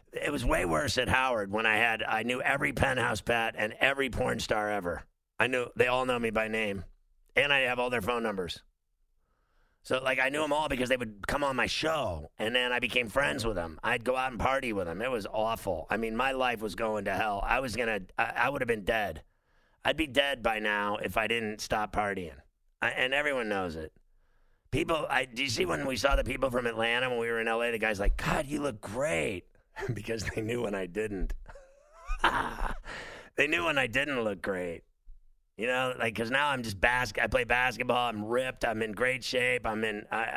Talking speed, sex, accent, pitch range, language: 225 wpm, male, American, 105-125 Hz, English